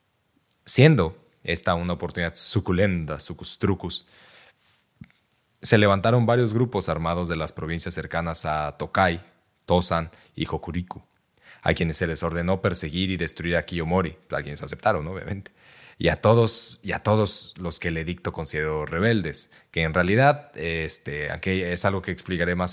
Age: 30-49